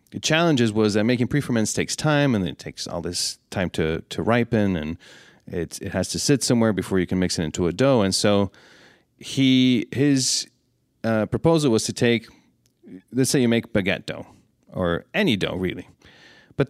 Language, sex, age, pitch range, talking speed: English, male, 30-49, 95-120 Hz, 185 wpm